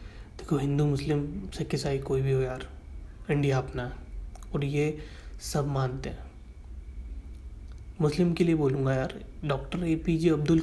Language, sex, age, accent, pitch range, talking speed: Hindi, male, 20-39, native, 105-160 Hz, 145 wpm